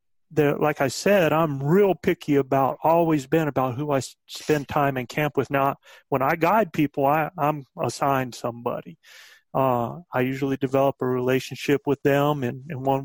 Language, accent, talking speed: English, American, 175 wpm